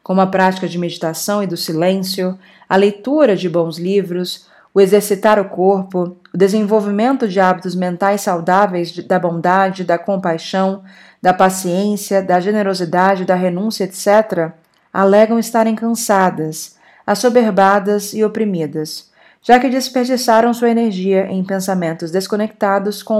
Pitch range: 185-225 Hz